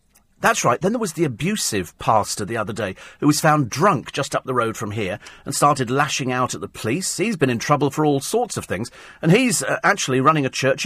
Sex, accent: male, British